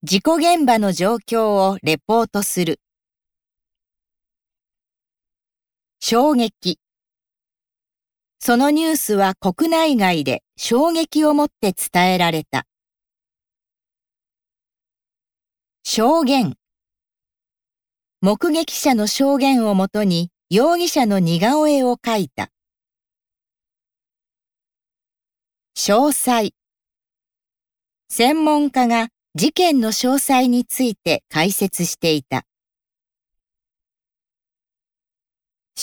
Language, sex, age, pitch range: Japanese, female, 40-59, 190-285 Hz